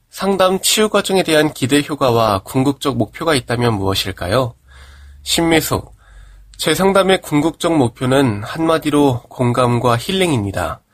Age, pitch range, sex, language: 20-39, 120-165 Hz, male, Korean